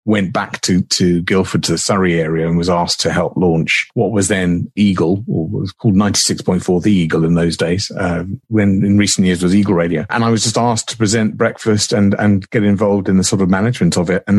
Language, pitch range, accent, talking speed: English, 85-100 Hz, British, 250 wpm